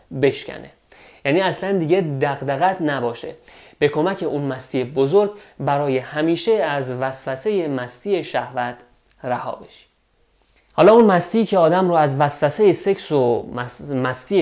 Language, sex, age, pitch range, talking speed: Persian, male, 30-49, 135-190 Hz, 120 wpm